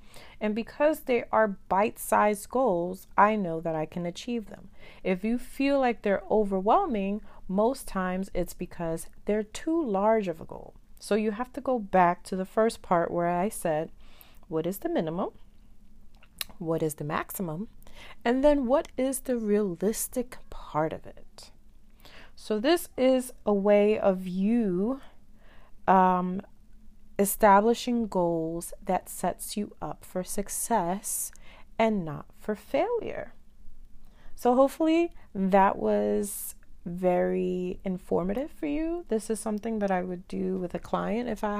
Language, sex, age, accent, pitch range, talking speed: English, female, 40-59, American, 180-225 Hz, 145 wpm